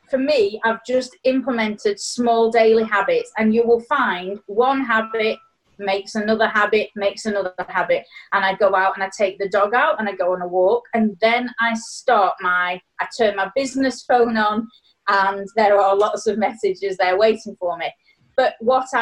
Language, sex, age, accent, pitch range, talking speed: English, female, 30-49, British, 195-240 Hz, 185 wpm